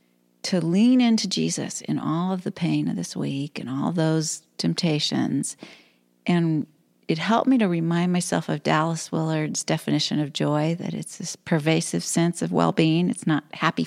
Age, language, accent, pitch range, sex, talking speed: 40-59, English, American, 165-220 Hz, female, 170 wpm